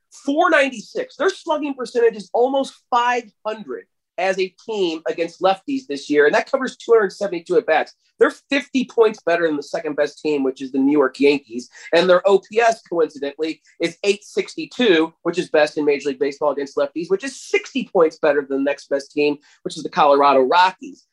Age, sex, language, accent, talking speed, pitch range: 30-49, male, English, American, 180 wpm, 155-225 Hz